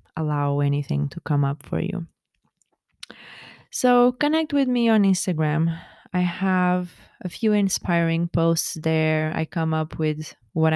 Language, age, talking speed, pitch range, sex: English, 20-39, 140 wpm, 150-185 Hz, female